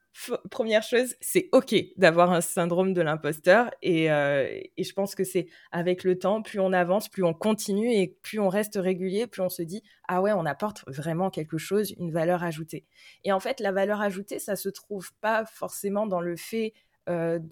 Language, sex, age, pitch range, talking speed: French, female, 20-39, 165-205 Hz, 215 wpm